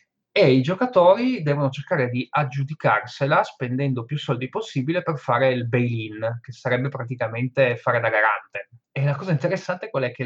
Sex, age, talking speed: male, 20-39, 160 wpm